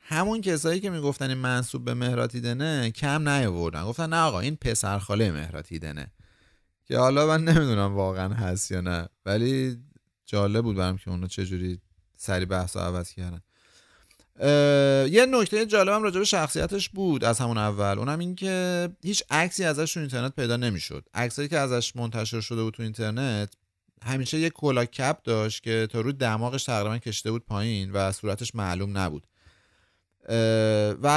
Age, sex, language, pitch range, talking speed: 30-49, male, Persian, 100-150 Hz, 160 wpm